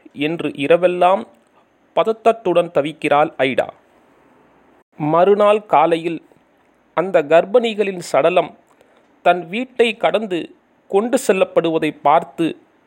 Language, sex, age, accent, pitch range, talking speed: Tamil, male, 40-59, native, 160-225 Hz, 70 wpm